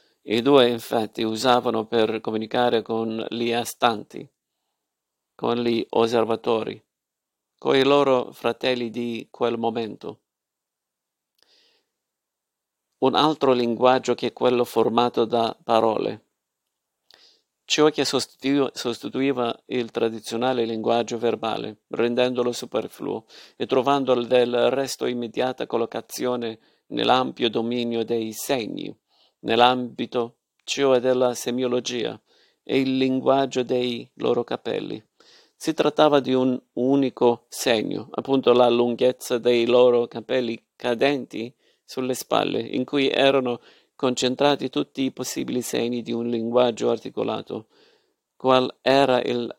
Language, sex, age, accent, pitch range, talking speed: Italian, male, 50-69, native, 115-130 Hz, 105 wpm